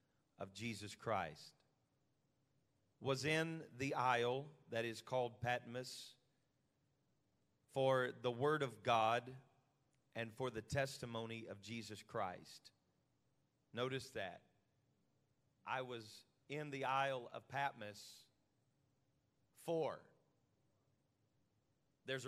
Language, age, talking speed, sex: English, 40-59, 90 wpm, male